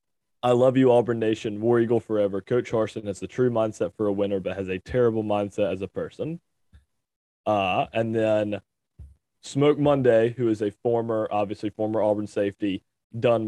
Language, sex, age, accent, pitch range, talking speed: English, male, 20-39, American, 105-125 Hz, 175 wpm